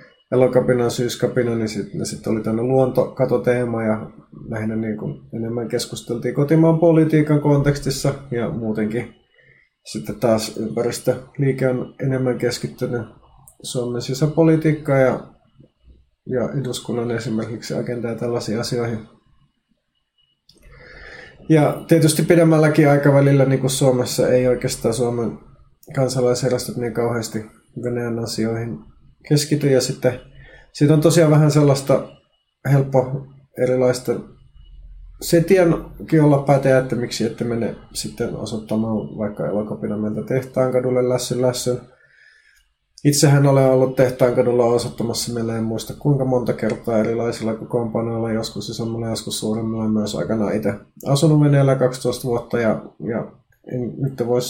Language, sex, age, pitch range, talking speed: Finnish, male, 20-39, 115-135 Hz, 115 wpm